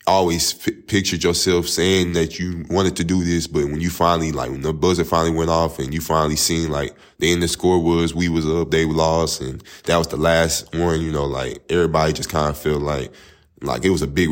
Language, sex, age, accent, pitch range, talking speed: English, male, 10-29, American, 75-85 Hz, 245 wpm